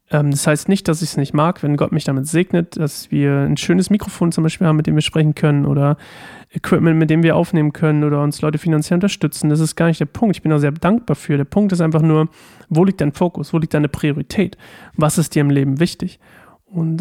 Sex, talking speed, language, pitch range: male, 245 wpm, German, 150-175 Hz